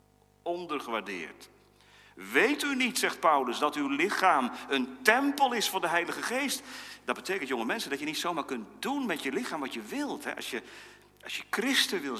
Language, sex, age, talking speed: Dutch, male, 40-59, 180 wpm